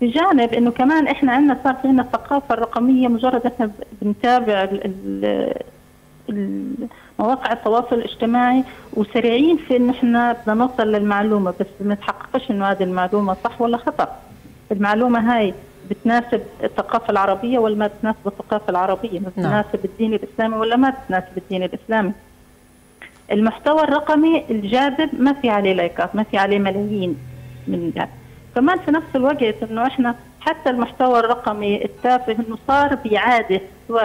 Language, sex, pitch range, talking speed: Arabic, female, 195-245 Hz, 135 wpm